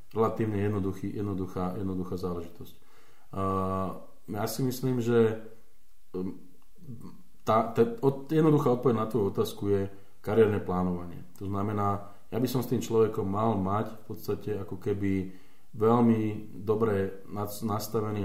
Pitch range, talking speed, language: 95-110 Hz, 125 wpm, Slovak